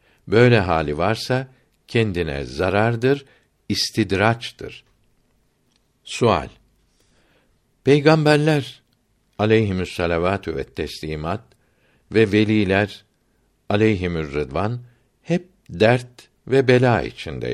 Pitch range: 90-120 Hz